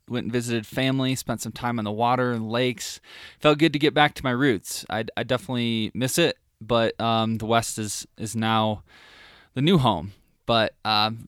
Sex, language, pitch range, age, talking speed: male, English, 110-130 Hz, 20-39, 195 wpm